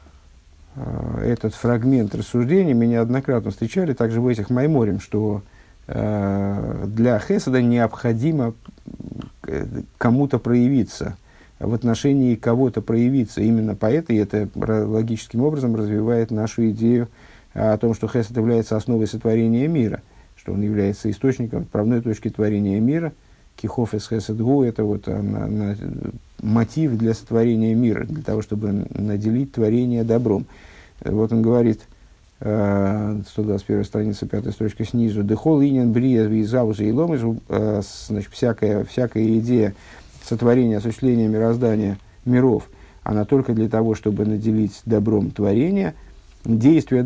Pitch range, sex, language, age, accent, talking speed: 105-125 Hz, male, Russian, 50-69, native, 115 wpm